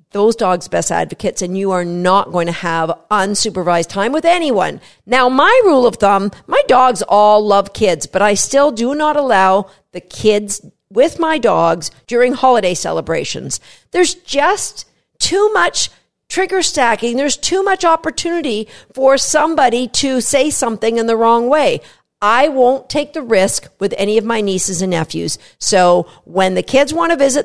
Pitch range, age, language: 195-285 Hz, 50-69, English